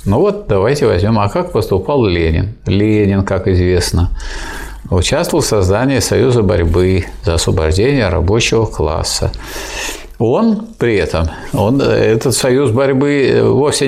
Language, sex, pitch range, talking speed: Russian, male, 90-125 Hz, 120 wpm